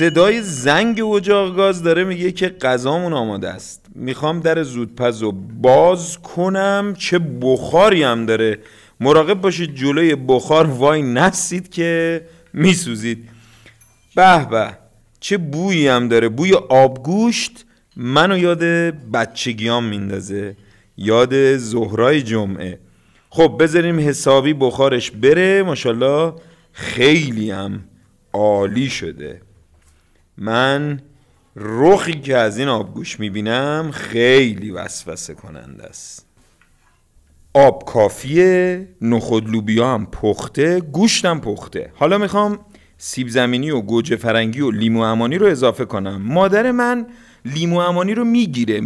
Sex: male